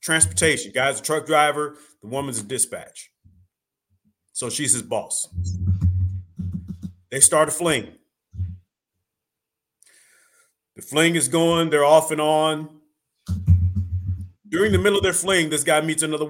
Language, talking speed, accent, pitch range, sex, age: English, 130 wpm, American, 120-165 Hz, male, 40-59